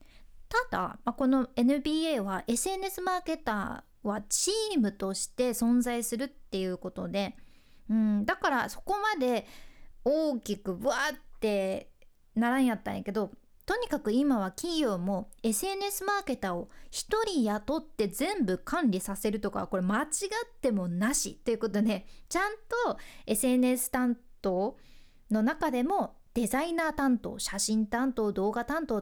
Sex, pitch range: female, 210-305 Hz